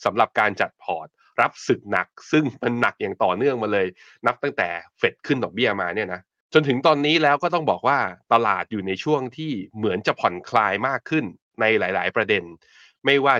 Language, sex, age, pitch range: Thai, male, 20-39, 110-145 Hz